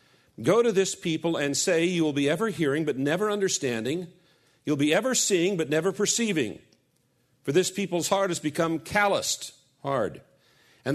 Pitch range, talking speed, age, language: 125-180 Hz, 165 wpm, 50-69, English